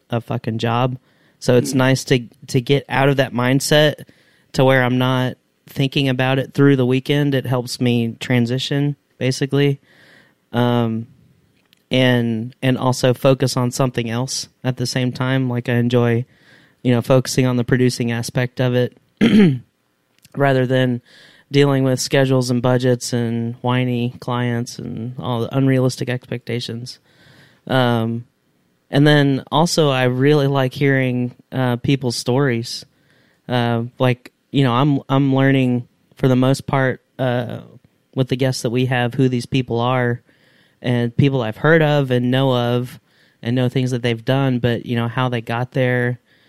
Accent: American